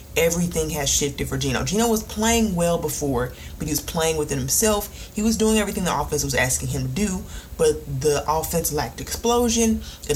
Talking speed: 195 wpm